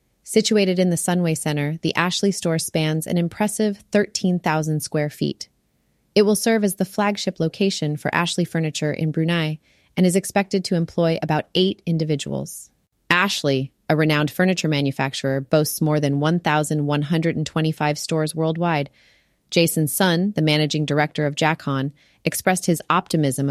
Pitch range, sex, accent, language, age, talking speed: 150-185 Hz, female, American, English, 30-49, 140 wpm